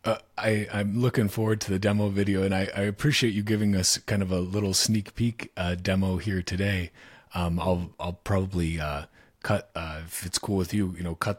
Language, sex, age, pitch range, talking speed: English, male, 30-49, 90-105 Hz, 215 wpm